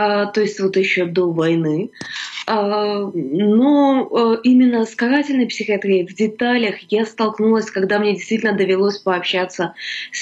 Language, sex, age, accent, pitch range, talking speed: Ukrainian, female, 20-39, native, 180-215 Hz, 125 wpm